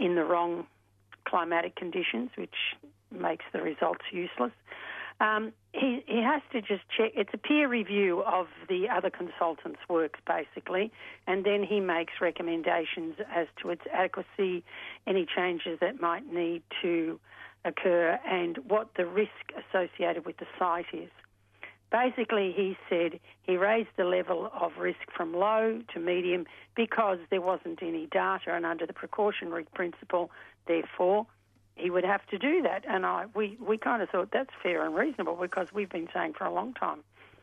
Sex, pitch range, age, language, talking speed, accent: female, 170-205 Hz, 50-69, English, 160 wpm, Australian